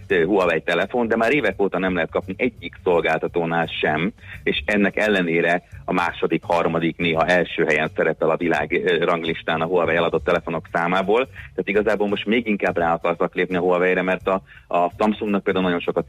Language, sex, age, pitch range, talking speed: Hungarian, male, 30-49, 85-100 Hz, 170 wpm